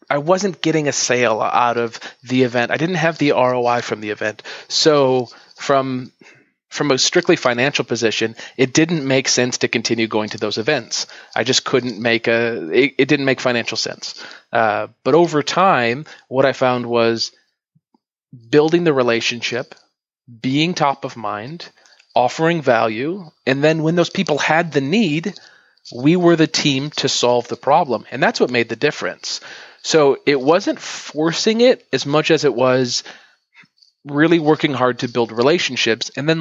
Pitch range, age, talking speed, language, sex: 120-155 Hz, 30-49, 165 wpm, English, male